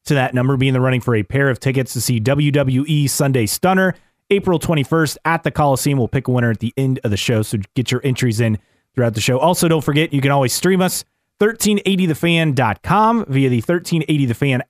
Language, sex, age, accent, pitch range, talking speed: English, male, 30-49, American, 120-165 Hz, 210 wpm